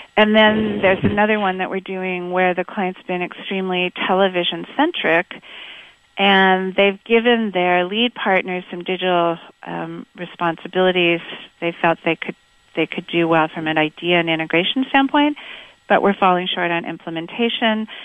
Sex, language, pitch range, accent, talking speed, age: female, English, 175-210 Hz, American, 145 wpm, 40-59